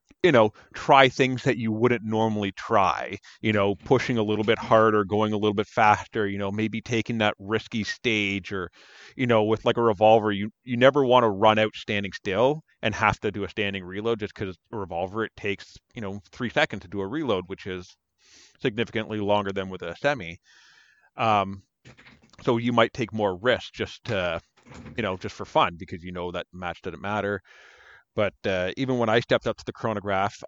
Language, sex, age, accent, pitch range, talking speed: English, male, 30-49, American, 100-115 Hz, 205 wpm